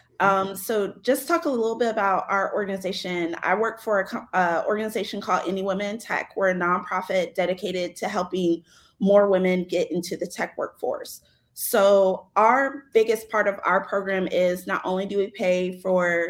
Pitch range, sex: 185-220 Hz, female